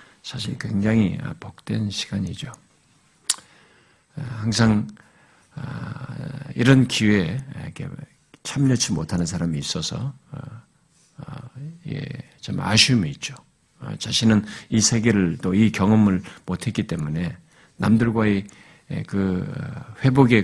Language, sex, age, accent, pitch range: Korean, male, 50-69, native, 100-135 Hz